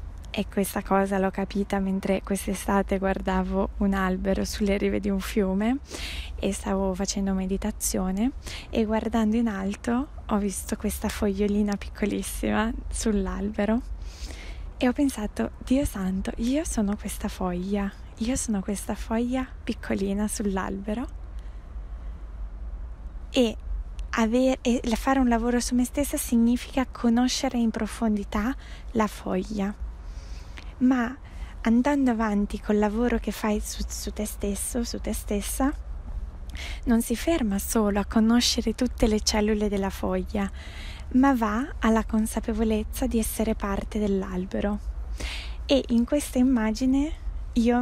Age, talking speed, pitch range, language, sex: 20-39, 120 wpm, 195-235 Hz, Italian, female